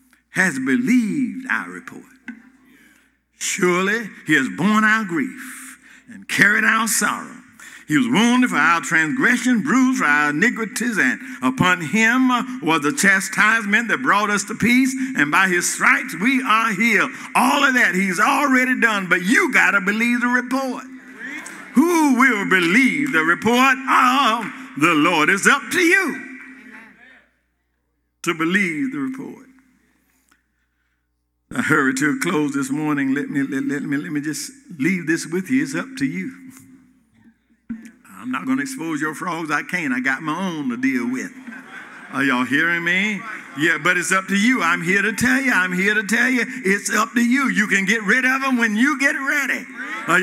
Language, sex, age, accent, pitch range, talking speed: English, male, 60-79, American, 190-260 Hz, 170 wpm